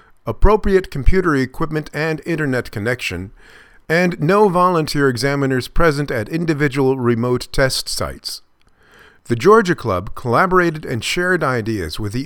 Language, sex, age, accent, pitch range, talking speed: English, male, 50-69, American, 120-165 Hz, 120 wpm